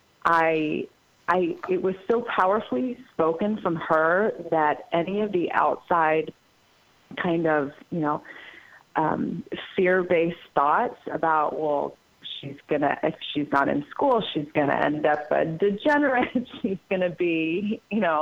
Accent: American